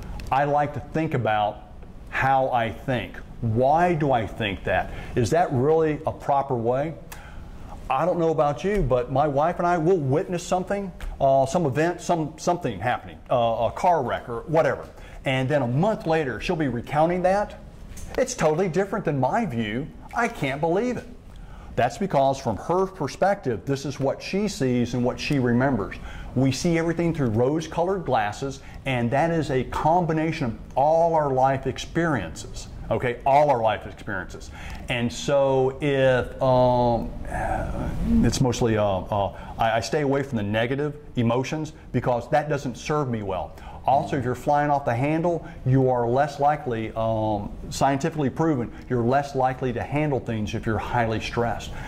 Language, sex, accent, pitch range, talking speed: English, male, American, 115-150 Hz, 170 wpm